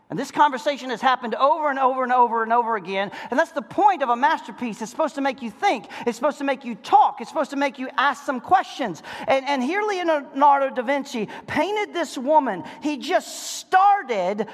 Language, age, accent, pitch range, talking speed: English, 40-59, American, 275-380 Hz, 215 wpm